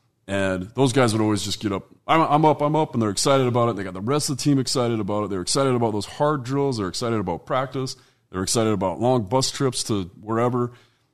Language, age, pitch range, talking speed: English, 30-49, 95-120 Hz, 255 wpm